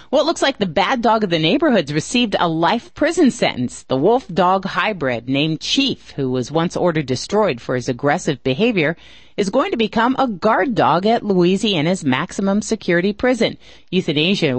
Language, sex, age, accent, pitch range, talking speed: English, female, 40-59, American, 160-225 Hz, 175 wpm